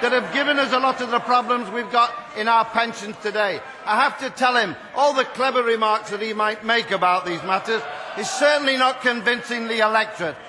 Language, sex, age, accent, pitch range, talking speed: English, male, 50-69, British, 225-280 Hz, 210 wpm